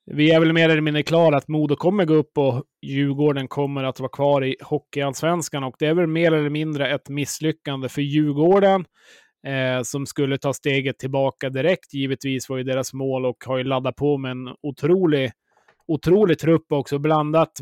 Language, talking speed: Swedish, 185 wpm